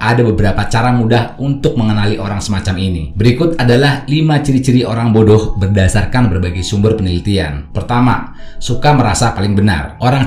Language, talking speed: Indonesian, 145 wpm